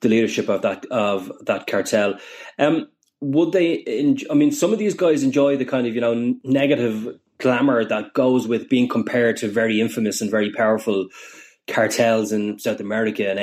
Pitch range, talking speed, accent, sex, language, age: 110-135 Hz, 185 wpm, Irish, male, English, 20-39